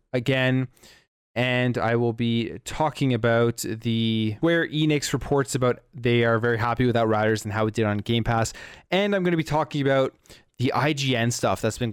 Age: 20-39